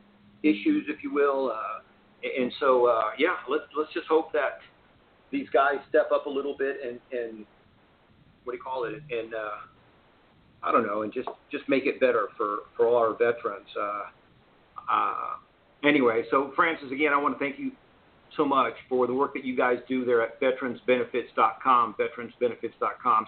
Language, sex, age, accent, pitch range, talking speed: English, male, 50-69, American, 130-165 Hz, 175 wpm